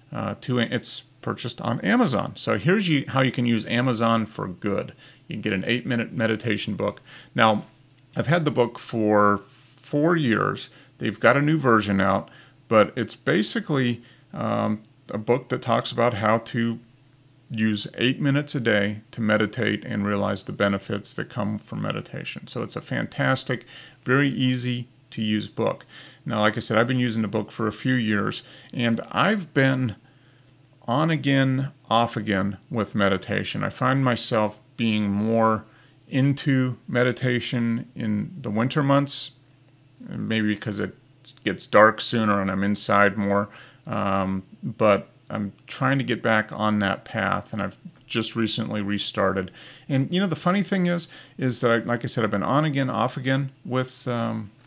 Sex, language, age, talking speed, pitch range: male, English, 40-59, 165 wpm, 110-135 Hz